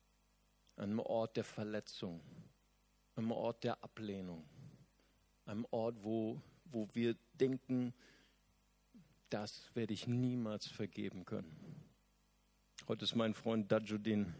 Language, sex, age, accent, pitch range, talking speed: German, male, 50-69, German, 115-150 Hz, 105 wpm